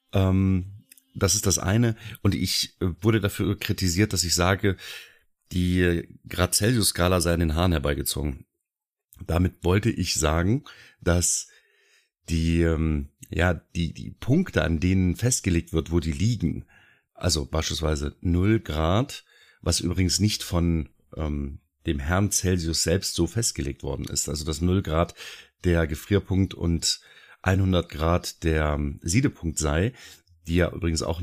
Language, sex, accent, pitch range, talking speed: German, male, German, 80-100 Hz, 135 wpm